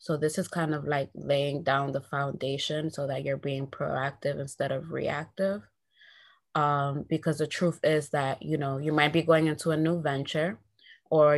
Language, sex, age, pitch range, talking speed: English, female, 20-39, 135-150 Hz, 185 wpm